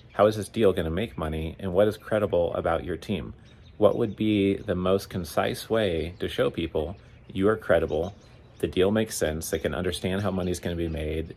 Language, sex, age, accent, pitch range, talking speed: English, male, 30-49, American, 85-105 Hz, 220 wpm